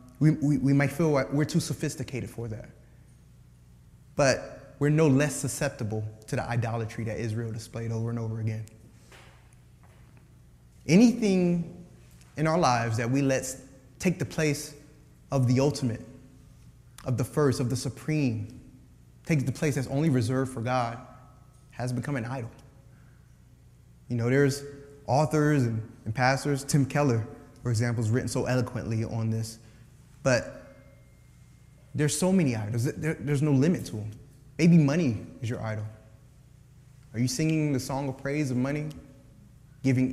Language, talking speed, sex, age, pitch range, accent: English, 150 wpm, male, 20-39, 115-140 Hz, American